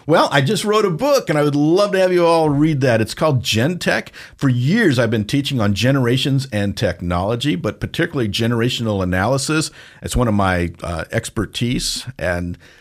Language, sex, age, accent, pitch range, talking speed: English, male, 50-69, American, 105-145 Hz, 185 wpm